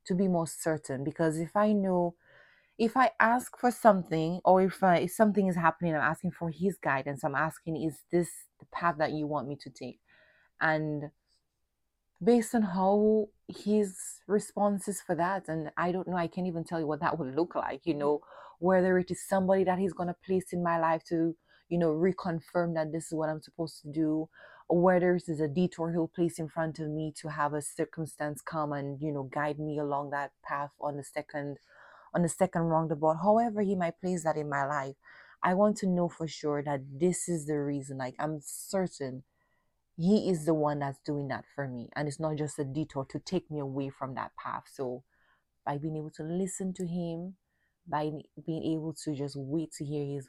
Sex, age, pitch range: female, 20-39, 145-180 Hz